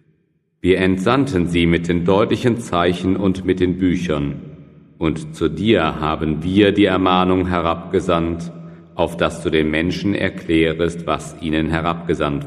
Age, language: 40-59, German